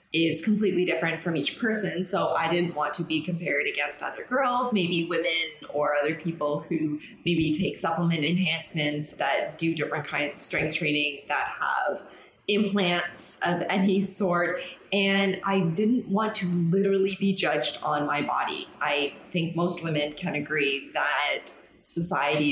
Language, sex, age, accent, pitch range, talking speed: English, female, 20-39, American, 155-195 Hz, 155 wpm